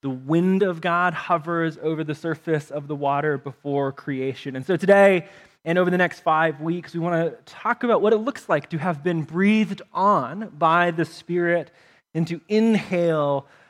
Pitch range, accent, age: 150-205 Hz, American, 20-39